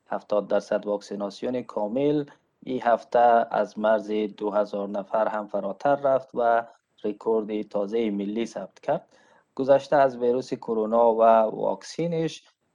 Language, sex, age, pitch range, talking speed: Persian, male, 20-39, 105-120 Hz, 115 wpm